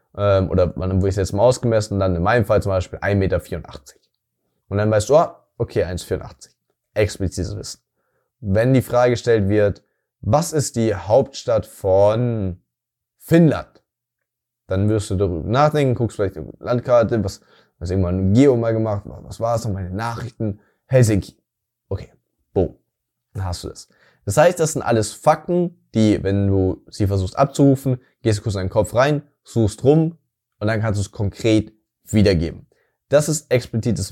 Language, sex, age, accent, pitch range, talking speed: German, male, 20-39, German, 100-125 Hz, 170 wpm